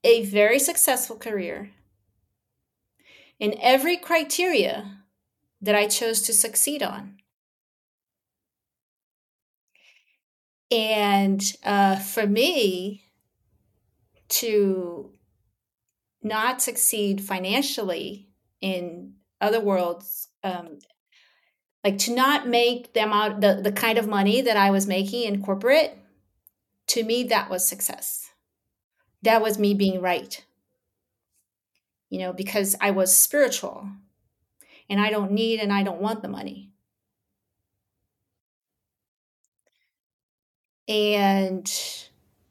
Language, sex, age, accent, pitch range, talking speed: English, female, 40-59, American, 185-225 Hz, 95 wpm